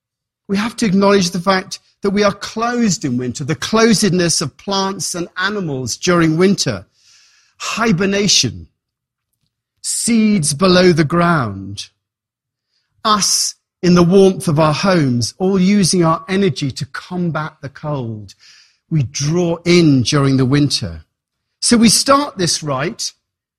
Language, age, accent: English, 40-59, British